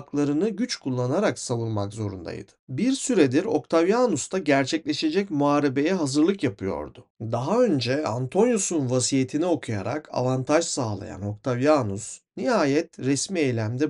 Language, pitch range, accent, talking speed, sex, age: Turkish, 115-170 Hz, native, 105 wpm, male, 40-59